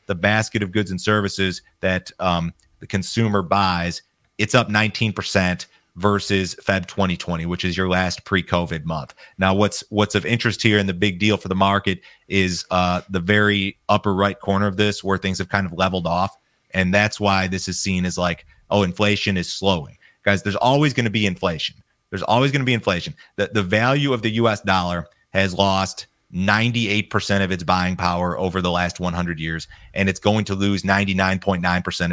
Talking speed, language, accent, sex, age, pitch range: 190 wpm, English, American, male, 30-49, 90-105 Hz